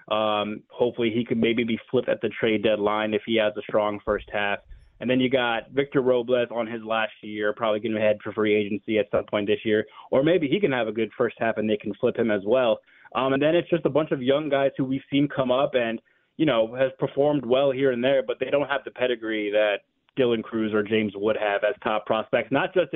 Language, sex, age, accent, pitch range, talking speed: English, male, 20-39, American, 115-140 Hz, 255 wpm